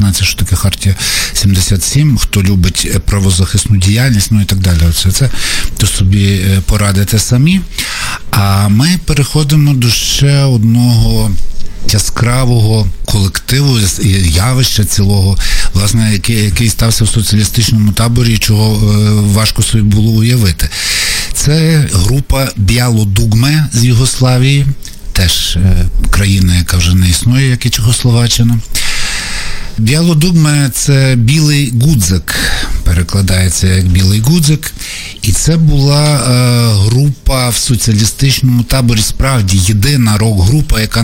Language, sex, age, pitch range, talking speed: Ukrainian, male, 60-79, 100-125 Hz, 110 wpm